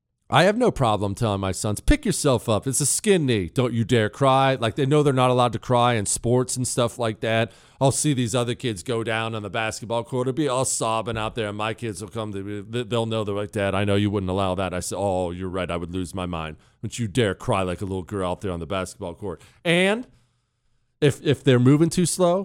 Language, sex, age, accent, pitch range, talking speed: English, male, 40-59, American, 110-160 Hz, 260 wpm